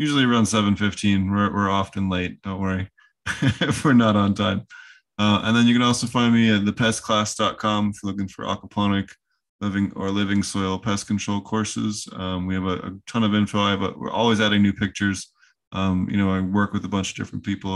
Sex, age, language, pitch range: male, 20-39, English, 95-110 Hz